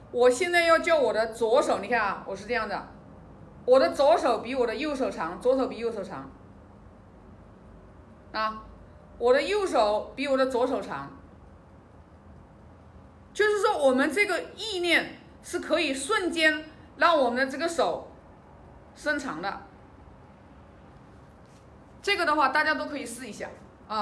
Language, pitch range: Chinese, 210-295 Hz